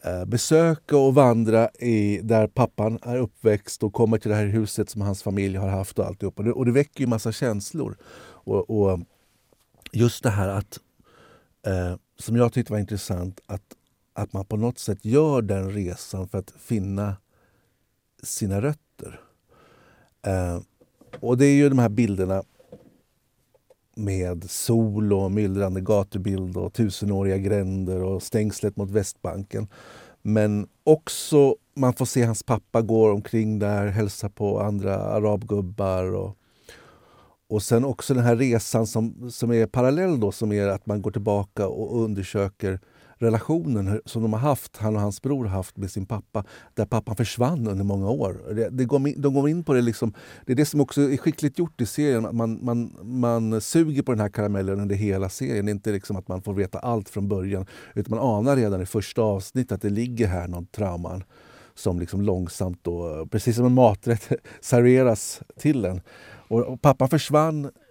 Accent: native